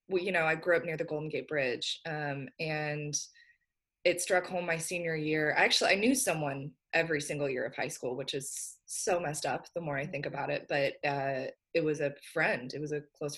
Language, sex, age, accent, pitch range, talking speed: English, female, 20-39, American, 145-205 Hz, 225 wpm